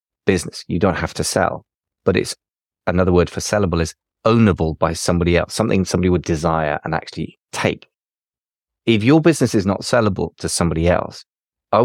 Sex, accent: male, British